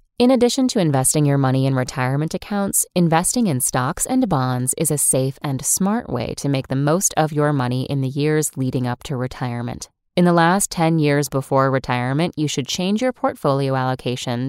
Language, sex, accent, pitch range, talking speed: English, female, American, 130-185 Hz, 195 wpm